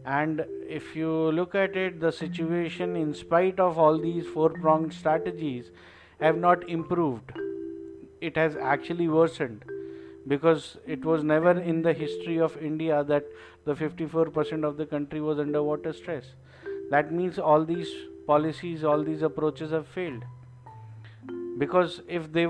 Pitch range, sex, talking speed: 140-165 Hz, male, 145 wpm